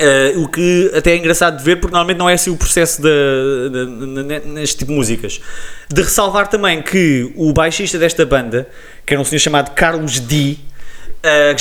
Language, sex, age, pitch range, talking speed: English, male, 20-39, 140-175 Hz, 175 wpm